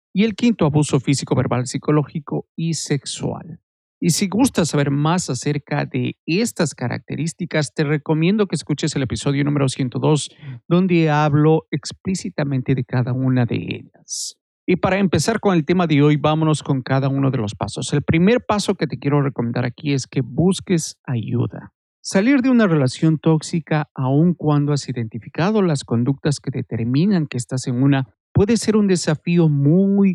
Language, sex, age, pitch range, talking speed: Spanish, male, 50-69, 135-175 Hz, 165 wpm